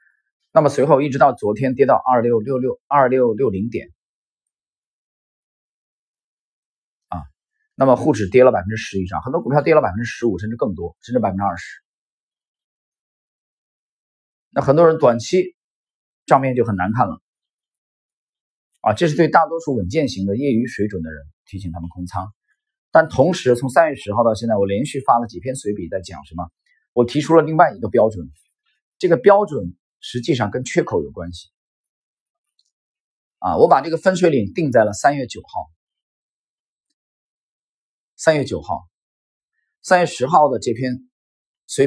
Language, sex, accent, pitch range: Chinese, male, native, 95-150 Hz